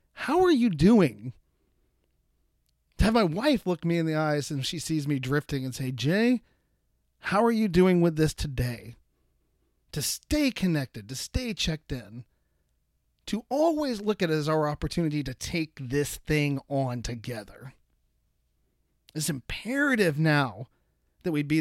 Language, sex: English, male